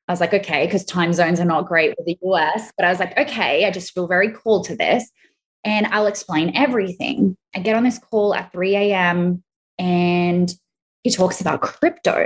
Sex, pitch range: female, 175-215 Hz